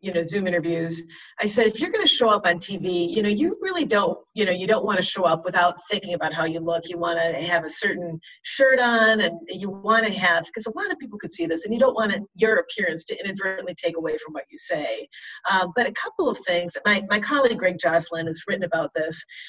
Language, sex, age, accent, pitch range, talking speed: English, female, 40-59, American, 175-230 Hz, 255 wpm